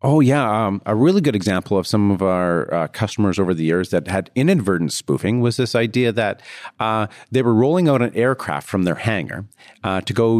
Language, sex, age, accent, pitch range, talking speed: English, male, 40-59, American, 100-125 Hz, 215 wpm